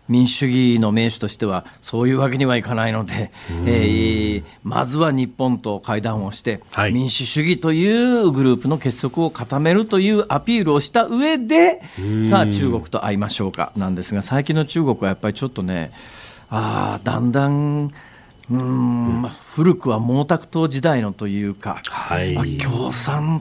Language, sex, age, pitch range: Japanese, male, 40-59, 110-150 Hz